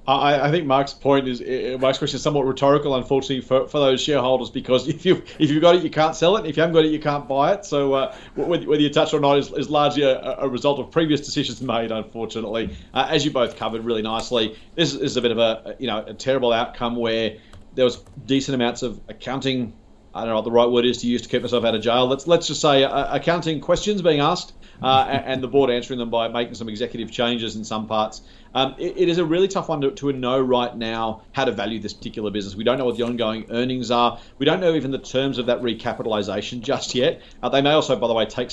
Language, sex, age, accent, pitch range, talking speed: English, male, 40-59, Australian, 115-145 Hz, 255 wpm